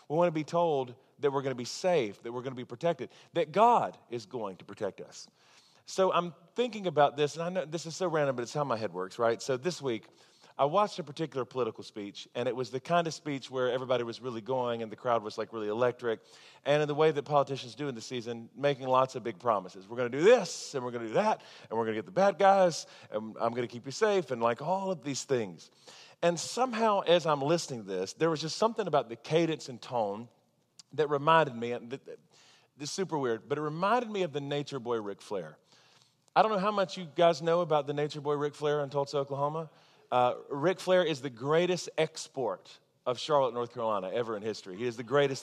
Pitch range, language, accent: 125-160 Hz, English, American